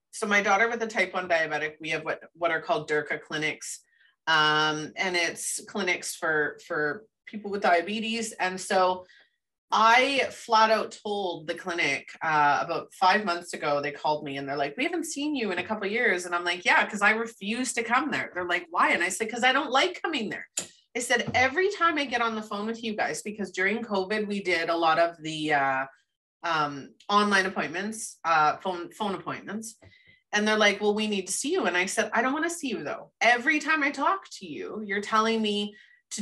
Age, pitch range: 30-49, 175-225 Hz